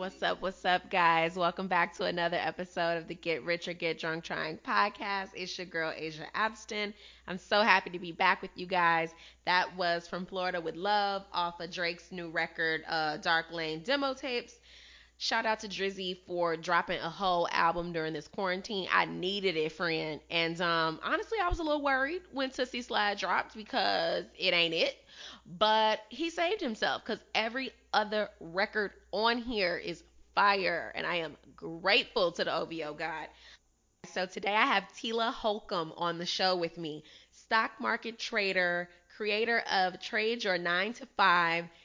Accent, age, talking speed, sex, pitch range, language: American, 20-39, 175 wpm, female, 170-215 Hz, English